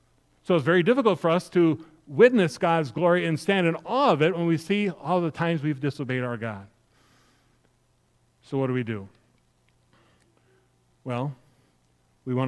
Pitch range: 125-180 Hz